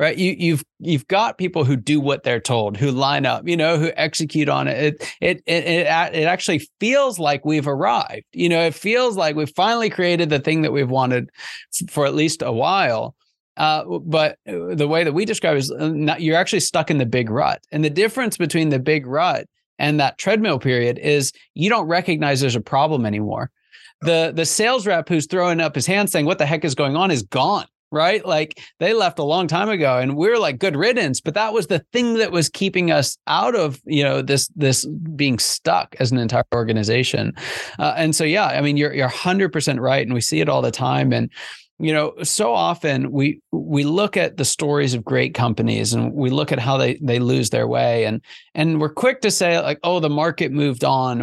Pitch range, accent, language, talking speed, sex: 135-170 Hz, American, English, 225 wpm, male